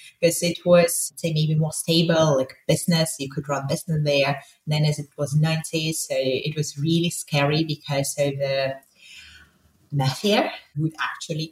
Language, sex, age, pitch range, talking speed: English, female, 30-49, 150-185 Hz, 160 wpm